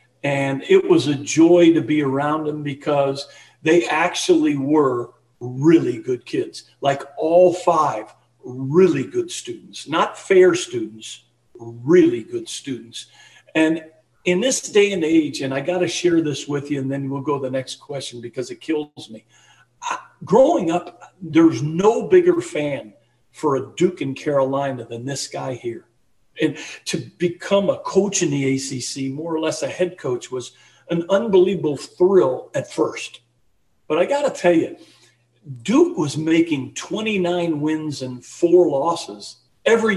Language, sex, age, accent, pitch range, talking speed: English, male, 50-69, American, 135-185 Hz, 155 wpm